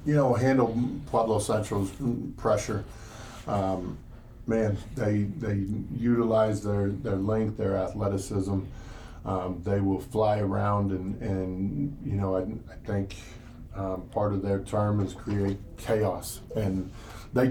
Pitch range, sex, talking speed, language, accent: 95-115 Hz, male, 130 wpm, English, American